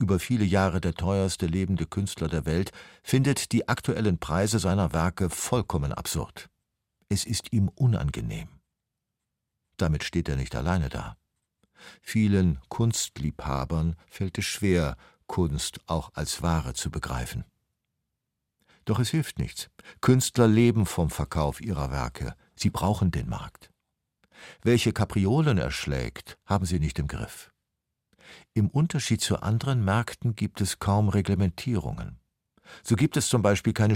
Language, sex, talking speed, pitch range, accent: German, male, 135 wpm, 85-115 Hz, German